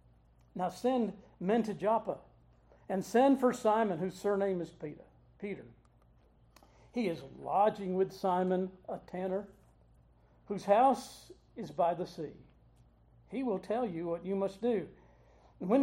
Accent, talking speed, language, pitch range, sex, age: American, 135 wpm, English, 175-215 Hz, male, 50-69